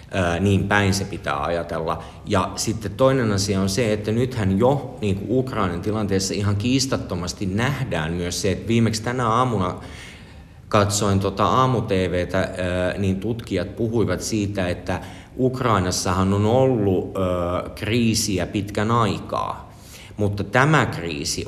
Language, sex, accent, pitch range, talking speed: Finnish, male, native, 90-120 Hz, 120 wpm